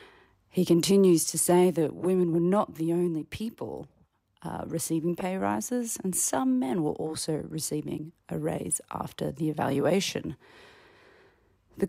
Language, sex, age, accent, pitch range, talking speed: English, female, 30-49, Australian, 155-190 Hz, 135 wpm